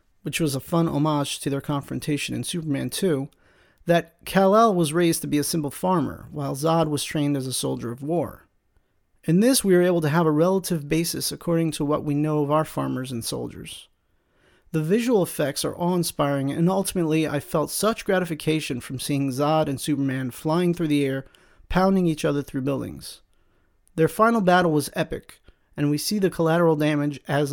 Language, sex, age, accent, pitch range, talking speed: English, male, 40-59, American, 145-180 Hz, 185 wpm